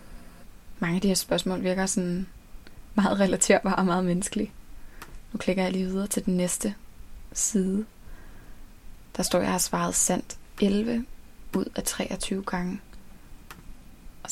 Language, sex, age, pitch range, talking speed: Danish, female, 20-39, 180-205 Hz, 140 wpm